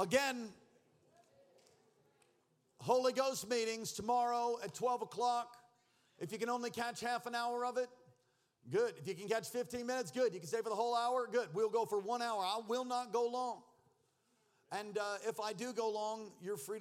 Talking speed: 190 wpm